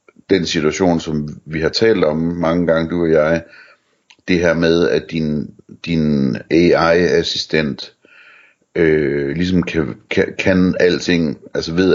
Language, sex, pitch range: Danish, male, 75-95 Hz